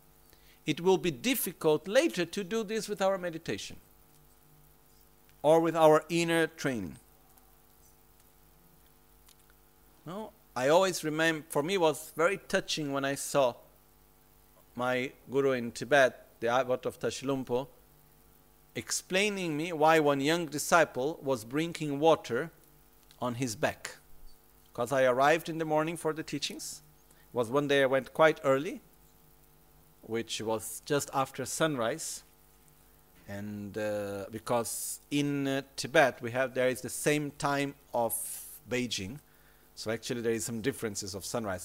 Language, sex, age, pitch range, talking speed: Italian, male, 50-69, 100-160 Hz, 140 wpm